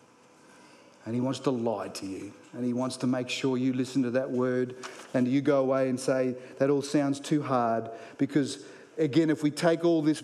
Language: English